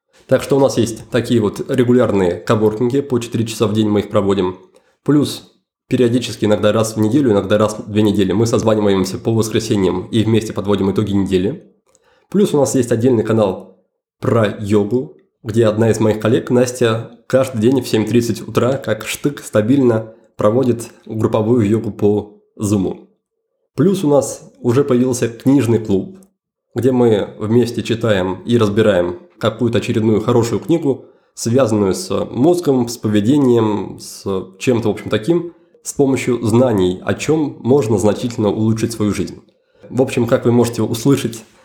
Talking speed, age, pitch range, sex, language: 155 wpm, 20-39, 105-125 Hz, male, Russian